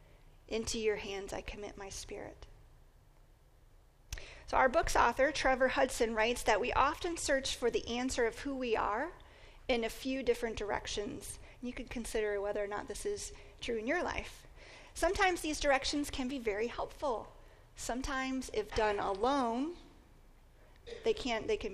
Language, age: English, 40-59